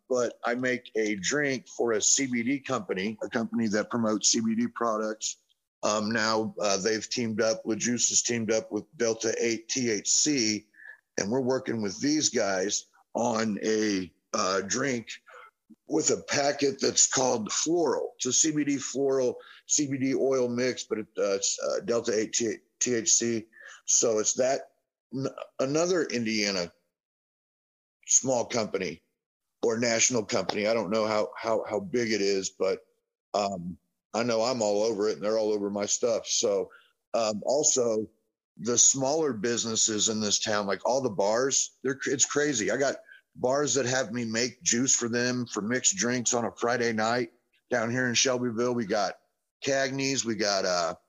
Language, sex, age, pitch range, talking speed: English, male, 50-69, 110-130 Hz, 160 wpm